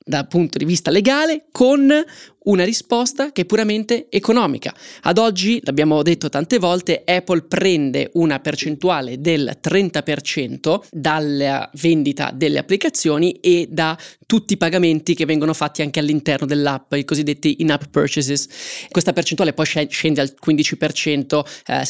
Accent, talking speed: native, 135 wpm